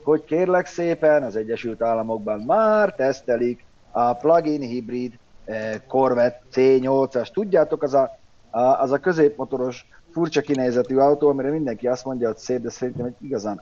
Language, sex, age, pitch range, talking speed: Hungarian, male, 30-49, 100-135 Hz, 155 wpm